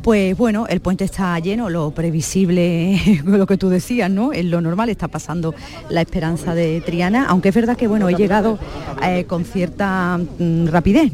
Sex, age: female, 40-59